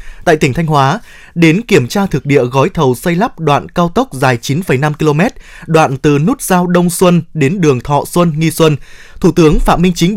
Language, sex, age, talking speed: Vietnamese, male, 20-39, 210 wpm